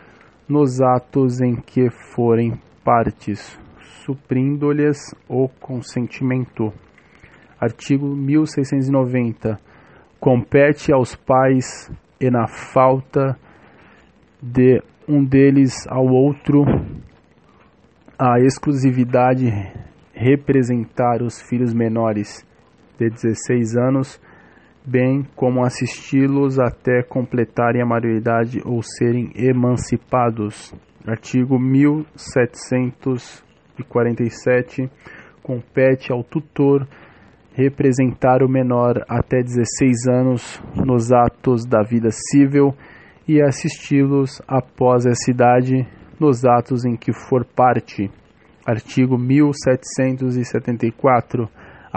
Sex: male